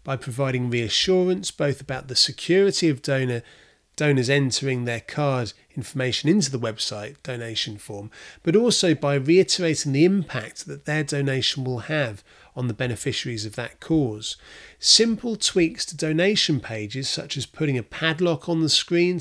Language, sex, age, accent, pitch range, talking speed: English, male, 30-49, British, 125-170 Hz, 150 wpm